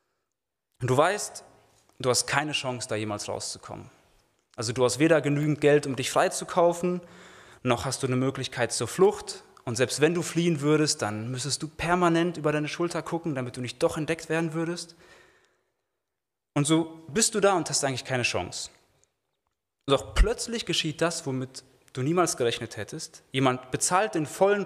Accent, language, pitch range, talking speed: German, German, 130-175 Hz, 170 wpm